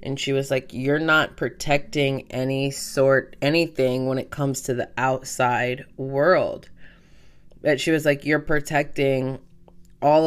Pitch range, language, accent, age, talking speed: 130-150 Hz, English, American, 20-39, 140 wpm